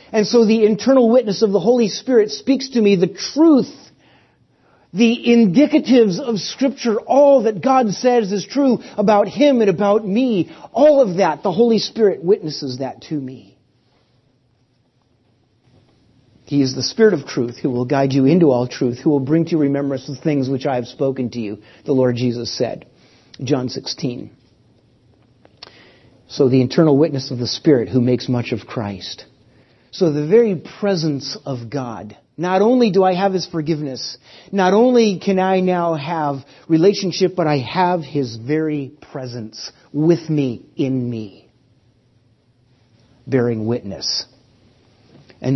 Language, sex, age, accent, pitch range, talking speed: English, male, 40-59, American, 120-185 Hz, 155 wpm